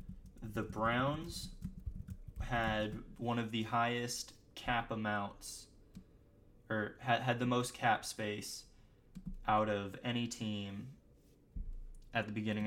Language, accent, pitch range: English, American, 105-125 Hz